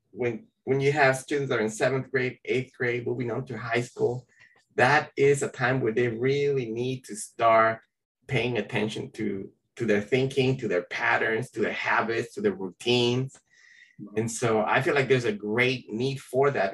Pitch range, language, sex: 120-170 Hz, English, male